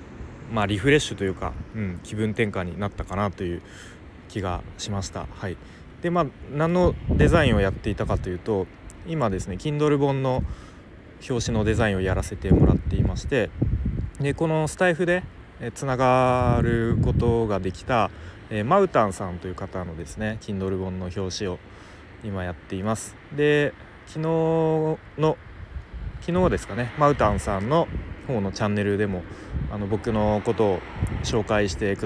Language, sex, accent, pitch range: Japanese, male, native, 95-120 Hz